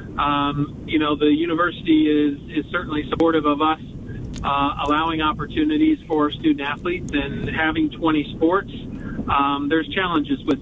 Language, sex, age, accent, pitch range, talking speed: English, male, 40-59, American, 150-170 Hz, 140 wpm